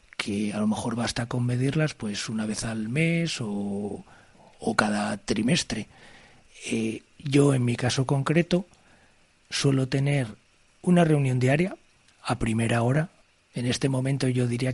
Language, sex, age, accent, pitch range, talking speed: Spanish, male, 40-59, Spanish, 115-145 Hz, 140 wpm